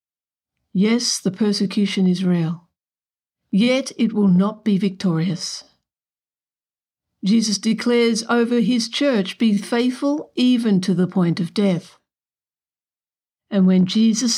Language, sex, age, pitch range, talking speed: English, female, 60-79, 180-230 Hz, 115 wpm